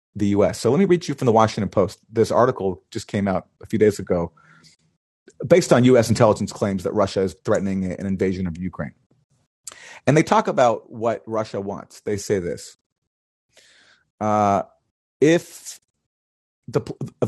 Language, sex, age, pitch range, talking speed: English, male, 30-49, 100-130 Hz, 160 wpm